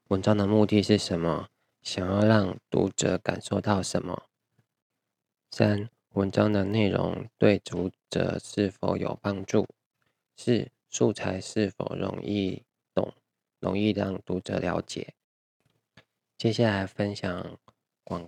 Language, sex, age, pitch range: Chinese, male, 20-39, 95-105 Hz